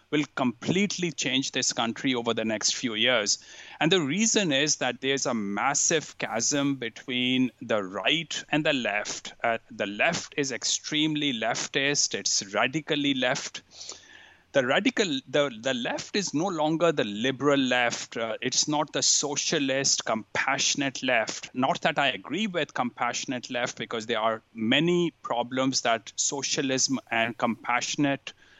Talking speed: 145 wpm